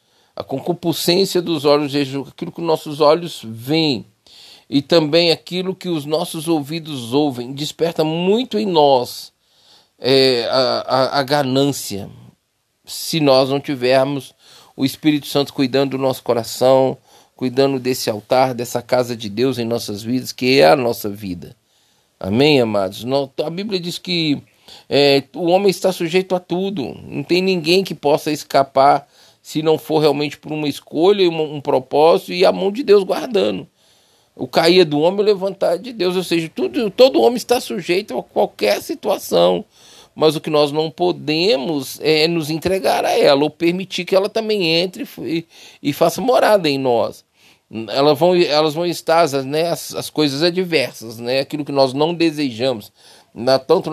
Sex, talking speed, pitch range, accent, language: male, 160 wpm, 135-175 Hz, Brazilian, Portuguese